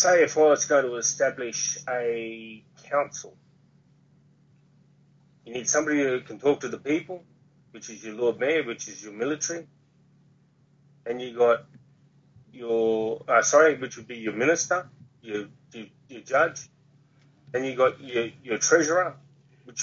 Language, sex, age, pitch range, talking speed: English, male, 30-49, 130-150 Hz, 150 wpm